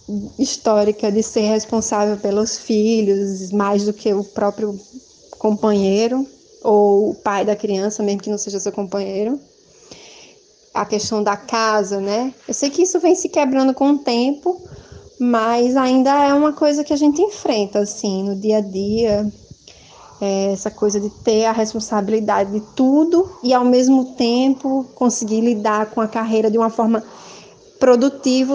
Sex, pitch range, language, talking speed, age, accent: female, 210-260 Hz, Portuguese, 155 wpm, 20-39, Brazilian